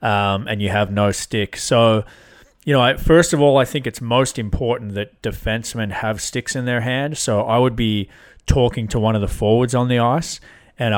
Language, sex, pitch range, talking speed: English, male, 100-125 Hz, 215 wpm